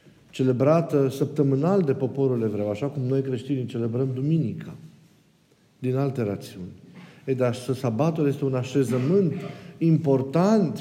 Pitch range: 125-160 Hz